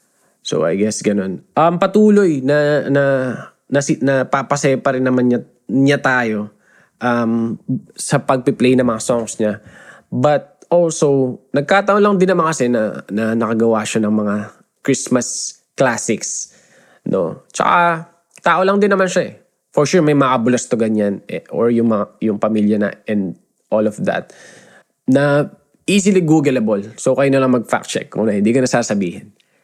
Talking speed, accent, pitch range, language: 165 wpm, native, 120-160 Hz, Filipino